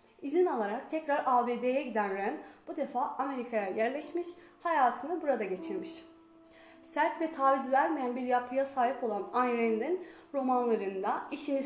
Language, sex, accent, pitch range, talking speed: Turkish, female, native, 235-310 Hz, 130 wpm